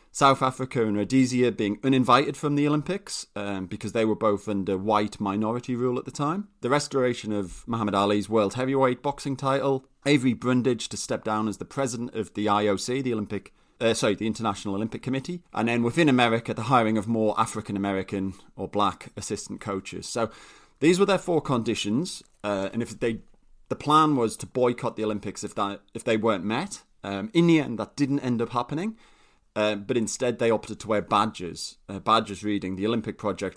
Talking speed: 195 wpm